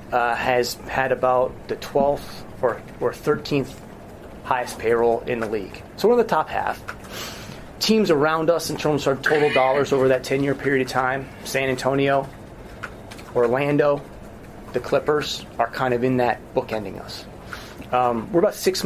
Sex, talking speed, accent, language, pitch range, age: male, 160 wpm, American, English, 120-145 Hz, 30-49